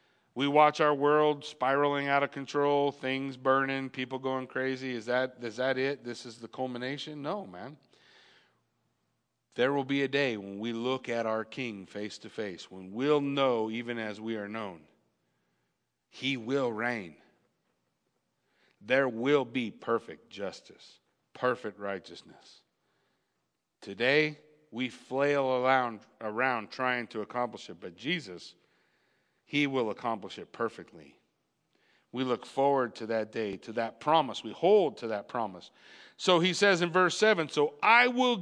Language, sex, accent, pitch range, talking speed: English, male, American, 120-155 Hz, 150 wpm